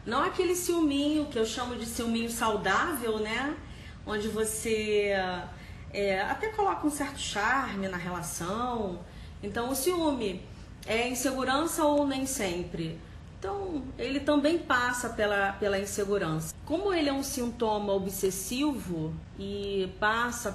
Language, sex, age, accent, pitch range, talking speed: Portuguese, female, 40-59, Brazilian, 195-260 Hz, 125 wpm